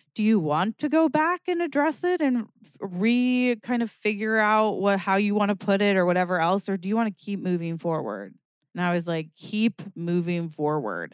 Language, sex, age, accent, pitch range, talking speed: English, female, 20-39, American, 170-215 Hz, 215 wpm